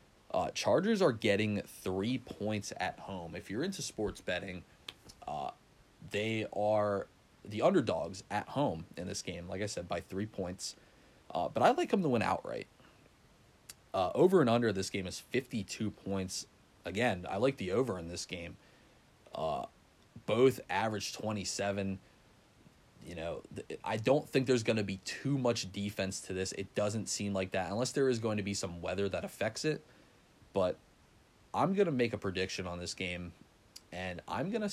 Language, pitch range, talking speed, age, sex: English, 90-110 Hz, 180 wpm, 20-39, male